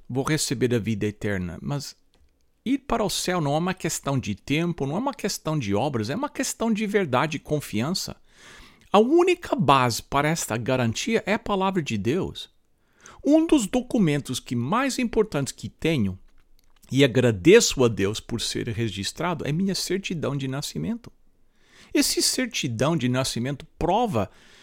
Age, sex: 60-79, male